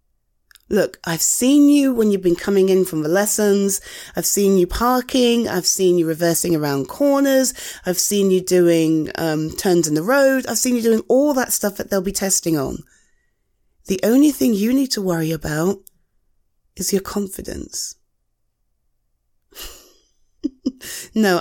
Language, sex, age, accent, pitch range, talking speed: English, female, 30-49, British, 170-250 Hz, 155 wpm